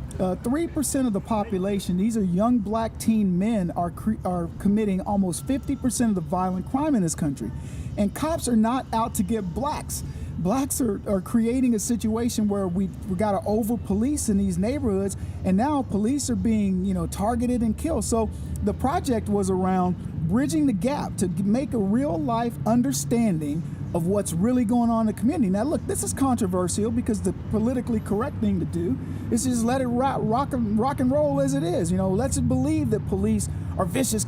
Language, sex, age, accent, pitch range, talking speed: English, male, 50-69, American, 185-240 Hz, 195 wpm